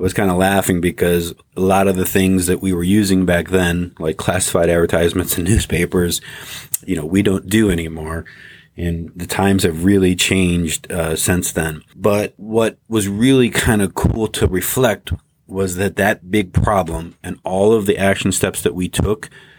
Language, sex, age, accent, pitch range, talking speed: English, male, 30-49, American, 90-100 Hz, 185 wpm